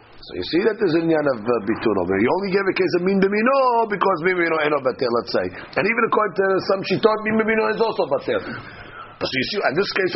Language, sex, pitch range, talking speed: English, male, 130-215 Hz, 265 wpm